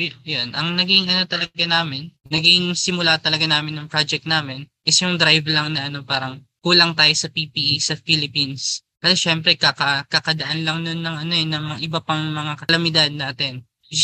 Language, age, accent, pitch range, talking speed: Filipino, 20-39, native, 140-165 Hz, 185 wpm